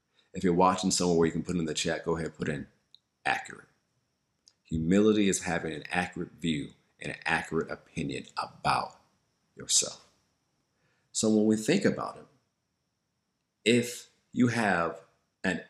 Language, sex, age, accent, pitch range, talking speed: English, male, 40-59, American, 85-105 Hz, 150 wpm